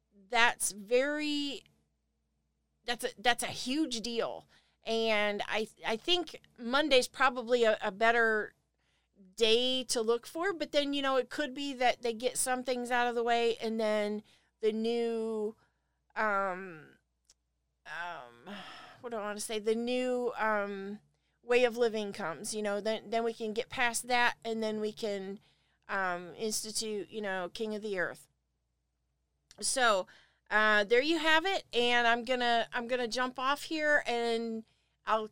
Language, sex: English, female